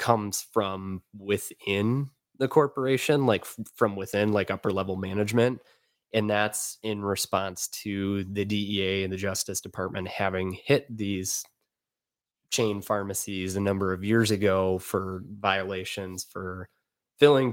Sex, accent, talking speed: male, American, 125 wpm